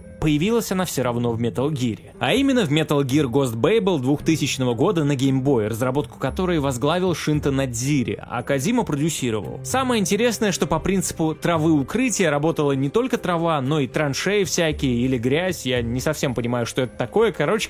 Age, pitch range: 20-39, 135-190 Hz